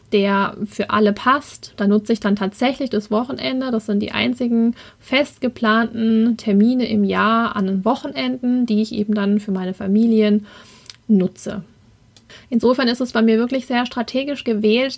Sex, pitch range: female, 205-250 Hz